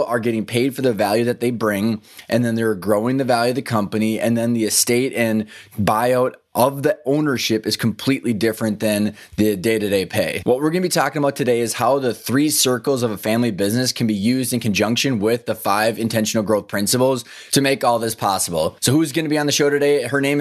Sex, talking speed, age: male, 230 wpm, 20-39